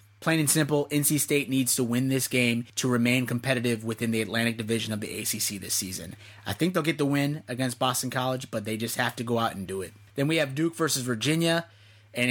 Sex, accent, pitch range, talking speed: male, American, 115-150 Hz, 235 wpm